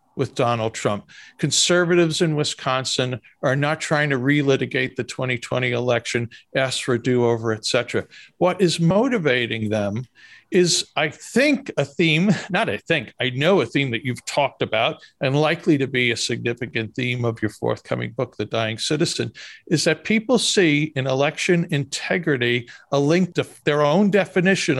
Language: English